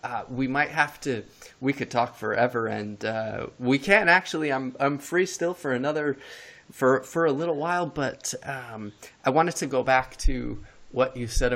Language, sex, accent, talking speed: English, male, American, 185 wpm